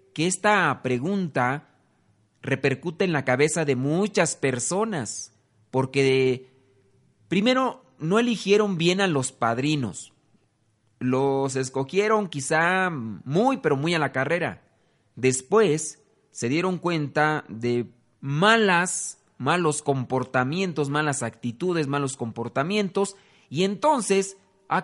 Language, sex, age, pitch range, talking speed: Spanish, male, 40-59, 130-180 Hz, 100 wpm